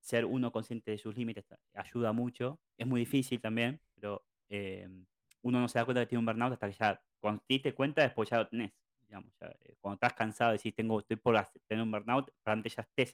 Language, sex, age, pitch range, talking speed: Spanish, male, 20-39, 105-125 Hz, 225 wpm